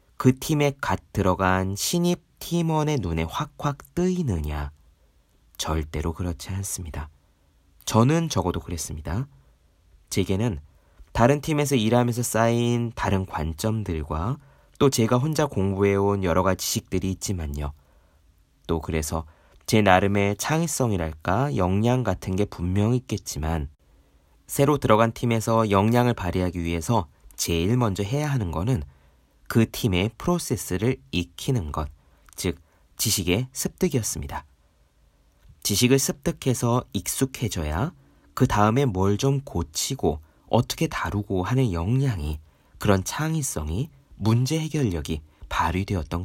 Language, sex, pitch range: Korean, male, 80-125 Hz